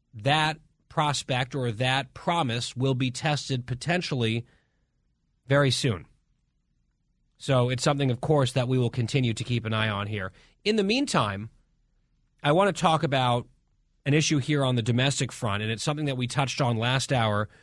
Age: 30-49